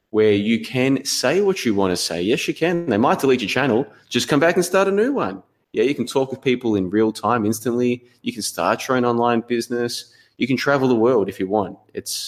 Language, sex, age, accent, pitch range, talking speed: English, male, 20-39, Australian, 95-125 Hz, 250 wpm